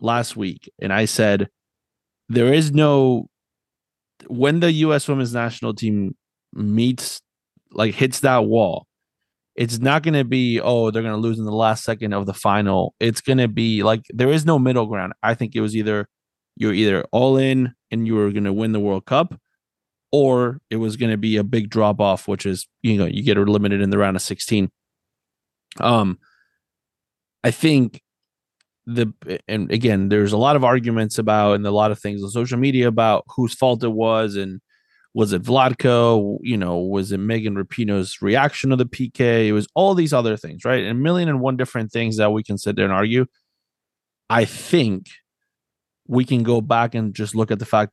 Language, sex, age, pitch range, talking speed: English, male, 20-39, 105-125 Hz, 200 wpm